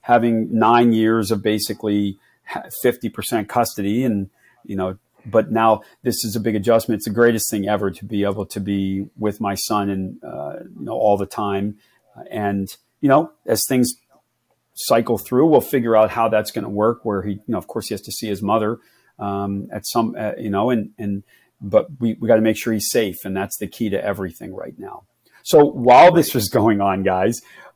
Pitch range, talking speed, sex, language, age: 100-115 Hz, 205 wpm, male, English, 40-59